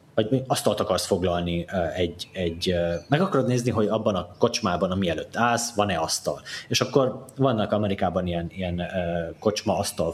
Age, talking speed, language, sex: 30-49, 150 wpm, Hungarian, male